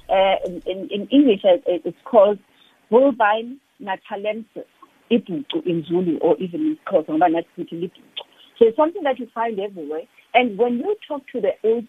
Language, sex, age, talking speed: English, female, 50-69, 145 wpm